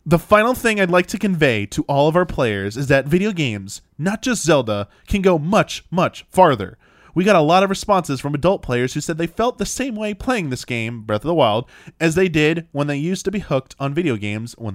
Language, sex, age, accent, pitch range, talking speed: English, male, 20-39, American, 120-180 Hz, 245 wpm